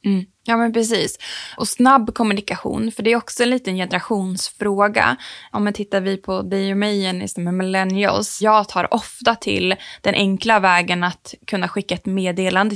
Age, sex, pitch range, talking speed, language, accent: 20-39, female, 180-205 Hz, 180 wpm, Swedish, Norwegian